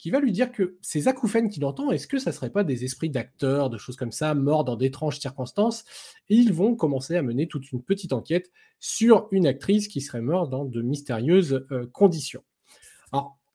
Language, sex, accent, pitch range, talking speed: French, male, French, 135-200 Hz, 210 wpm